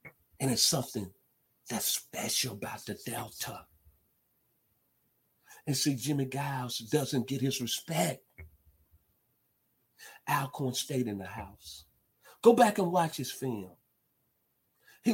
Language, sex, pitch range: English, male, 100-135 Hz